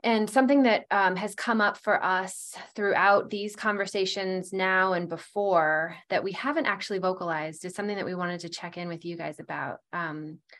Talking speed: 185 wpm